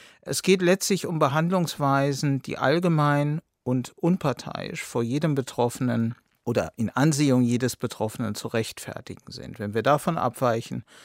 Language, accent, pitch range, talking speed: German, German, 125-155 Hz, 130 wpm